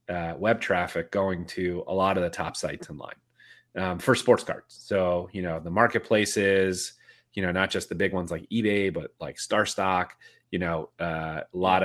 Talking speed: 195 wpm